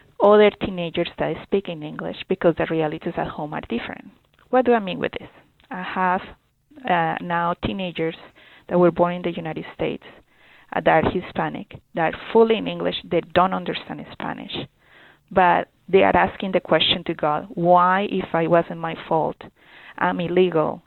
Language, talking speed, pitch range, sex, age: English, 175 wpm, 165-195 Hz, female, 30-49